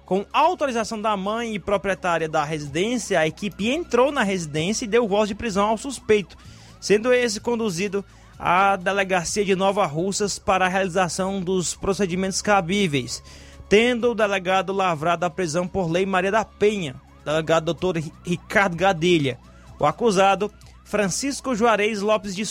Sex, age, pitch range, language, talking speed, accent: male, 20-39, 165-215 Hz, Portuguese, 145 wpm, Brazilian